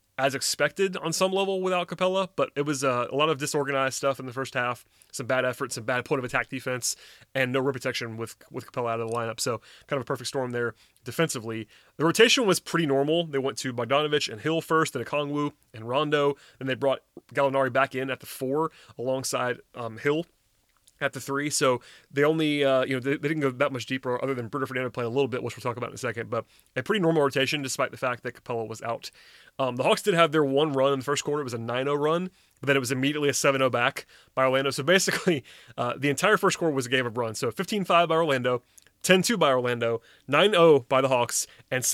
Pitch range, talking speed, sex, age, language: 125-150 Hz, 245 wpm, male, 30-49, English